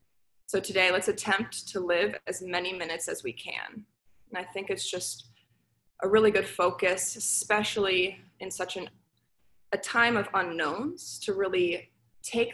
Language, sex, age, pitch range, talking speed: English, female, 20-39, 180-210 Hz, 150 wpm